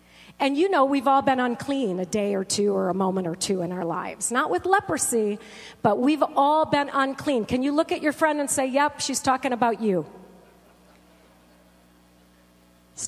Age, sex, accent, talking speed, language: 40-59, female, American, 190 wpm, English